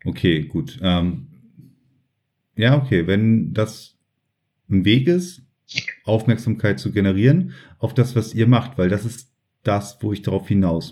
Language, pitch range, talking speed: German, 95-130 Hz, 145 wpm